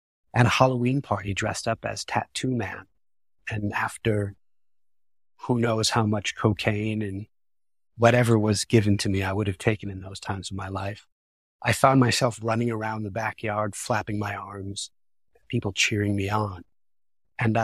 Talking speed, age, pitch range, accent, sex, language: 160 wpm, 30-49, 100-115 Hz, American, male, English